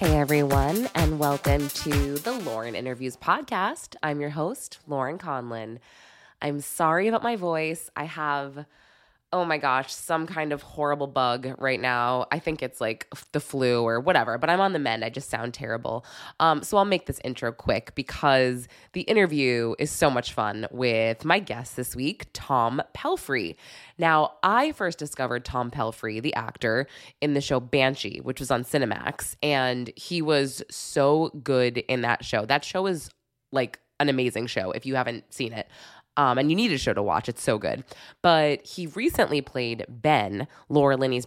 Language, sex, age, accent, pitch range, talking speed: English, female, 20-39, American, 120-150 Hz, 180 wpm